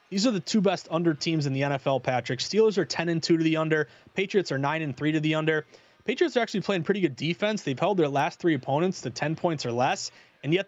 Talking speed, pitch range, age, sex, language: 265 wpm, 140-180 Hz, 20-39, male, English